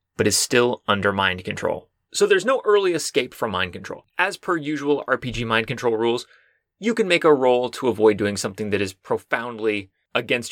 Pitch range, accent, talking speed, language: 115-185 Hz, American, 195 wpm, English